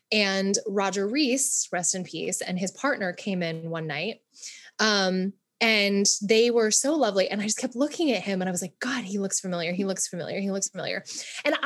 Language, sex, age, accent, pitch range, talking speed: English, female, 20-39, American, 200-280 Hz, 210 wpm